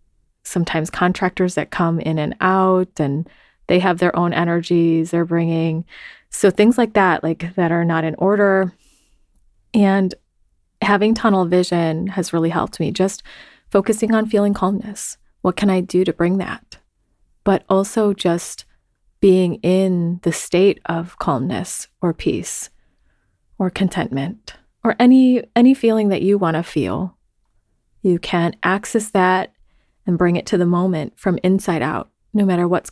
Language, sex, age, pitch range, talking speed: English, female, 20-39, 165-195 Hz, 150 wpm